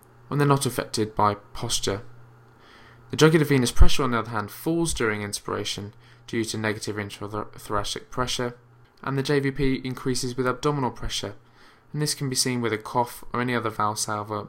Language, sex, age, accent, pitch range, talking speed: English, male, 20-39, British, 115-135 Hz, 165 wpm